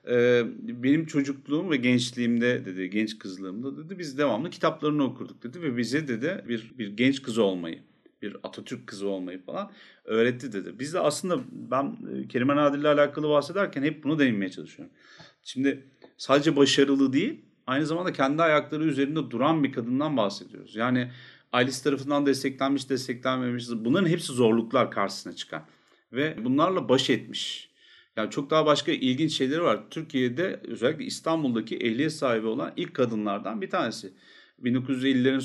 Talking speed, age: 145 wpm, 40-59